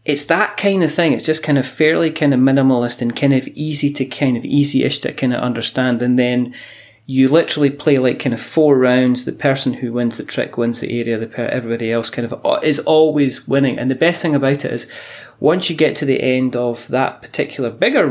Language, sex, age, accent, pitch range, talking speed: English, male, 30-49, British, 120-145 Hz, 225 wpm